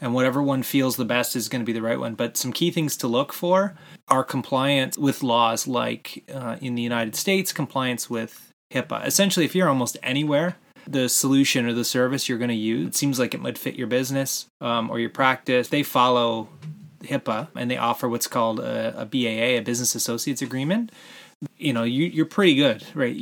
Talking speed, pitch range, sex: 210 wpm, 115-140 Hz, male